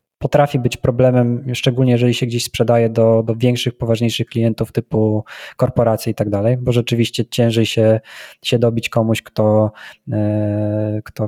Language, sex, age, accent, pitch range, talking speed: Polish, male, 20-39, native, 115-125 Hz, 145 wpm